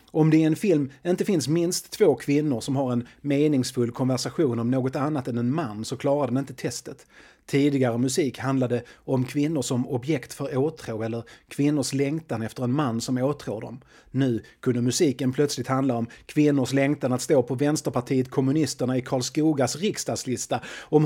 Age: 30-49